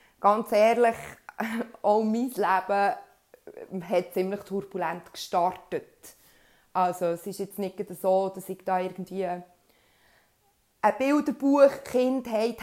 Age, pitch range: 20-39, 190-225 Hz